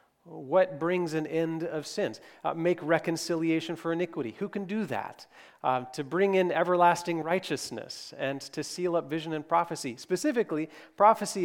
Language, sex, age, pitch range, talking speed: English, male, 40-59, 145-170 Hz, 155 wpm